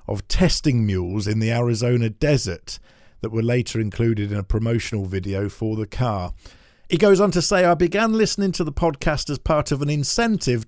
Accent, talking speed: British, 190 wpm